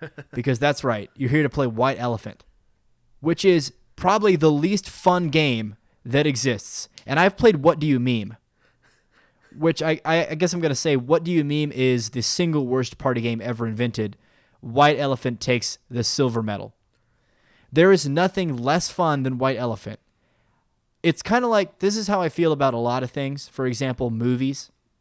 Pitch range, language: 120-160 Hz, English